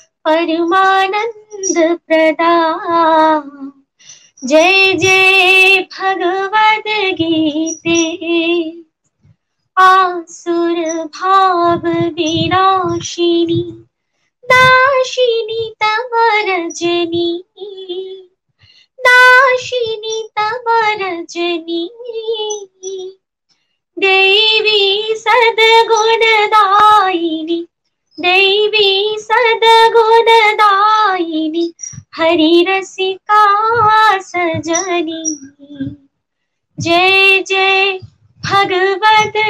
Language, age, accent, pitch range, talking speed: Hindi, 20-39, native, 340-430 Hz, 35 wpm